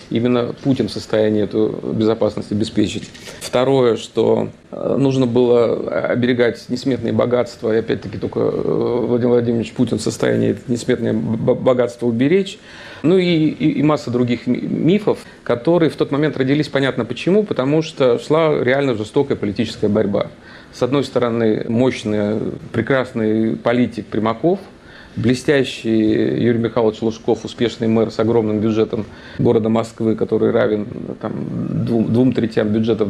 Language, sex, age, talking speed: Russian, male, 40-59, 125 wpm